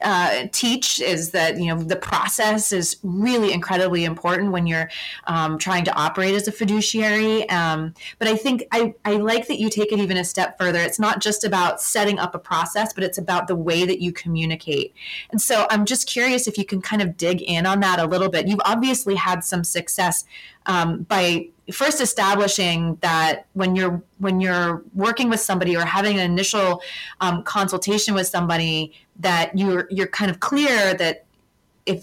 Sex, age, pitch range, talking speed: female, 30-49, 175-210 Hz, 190 wpm